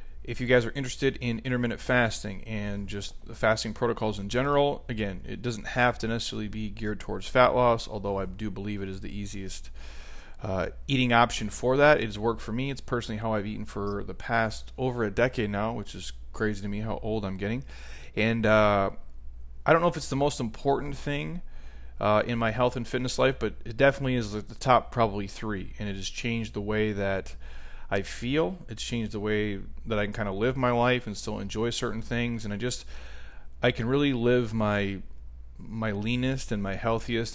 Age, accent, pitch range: 30-49, American, 100-120 Hz